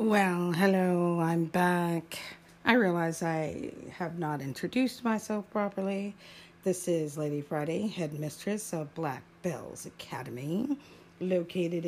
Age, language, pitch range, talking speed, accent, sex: 50-69, English, 155-195 Hz, 110 wpm, American, female